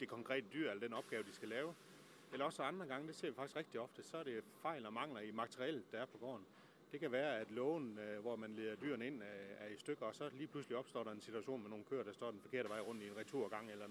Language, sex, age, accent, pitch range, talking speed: Danish, male, 30-49, native, 110-140 Hz, 280 wpm